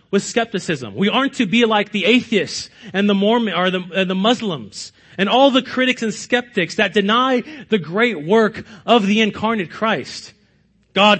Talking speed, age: 175 wpm, 30-49